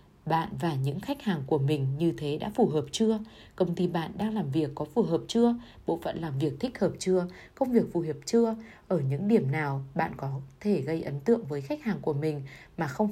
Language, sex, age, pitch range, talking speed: Vietnamese, female, 20-39, 150-205 Hz, 240 wpm